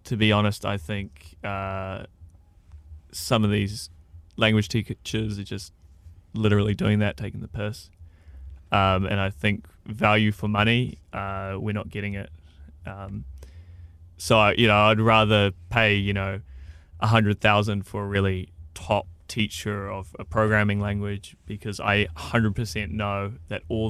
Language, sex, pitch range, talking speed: English, male, 90-110 Hz, 150 wpm